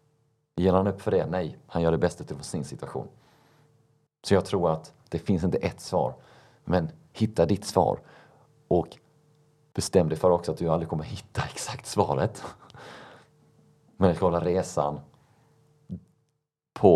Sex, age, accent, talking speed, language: male, 30-49, native, 150 wpm, Swedish